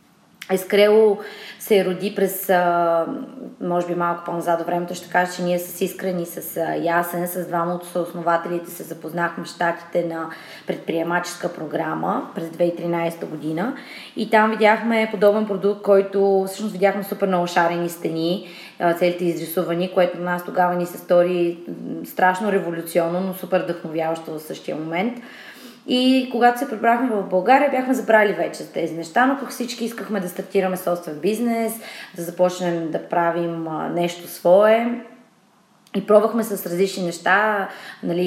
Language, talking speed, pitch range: Bulgarian, 145 wpm, 175-210 Hz